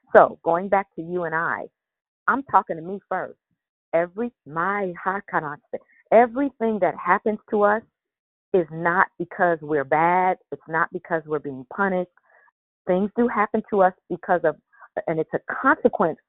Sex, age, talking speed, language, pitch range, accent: female, 40-59, 155 wpm, English, 155-195 Hz, American